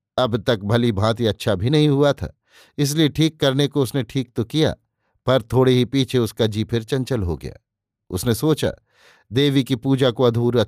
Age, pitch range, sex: 50-69, 110-140 Hz, male